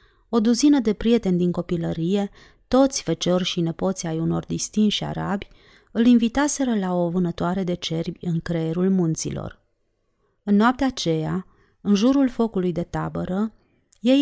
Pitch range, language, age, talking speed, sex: 155-225 Hz, Romanian, 30-49, 140 wpm, female